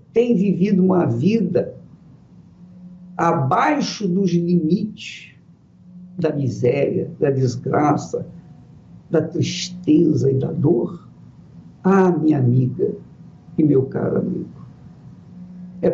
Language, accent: Portuguese, Brazilian